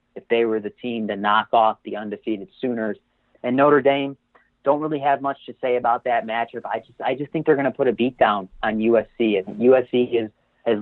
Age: 30-49